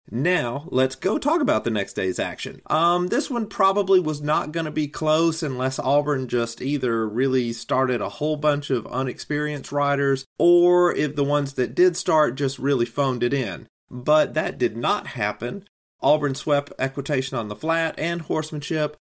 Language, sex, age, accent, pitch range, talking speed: English, male, 30-49, American, 130-165 Hz, 175 wpm